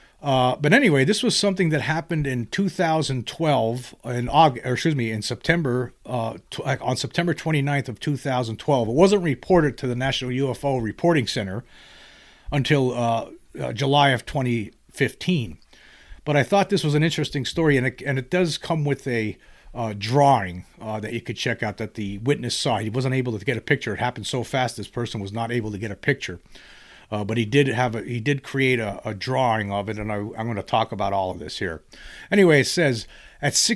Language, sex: English, male